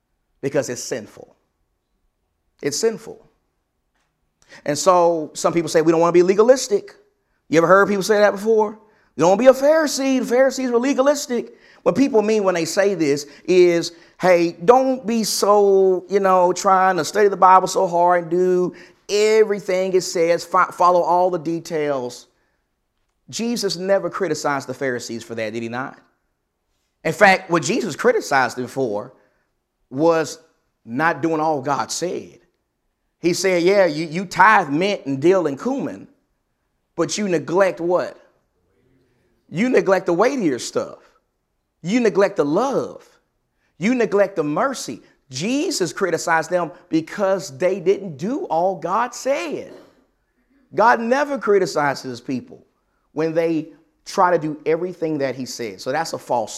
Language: English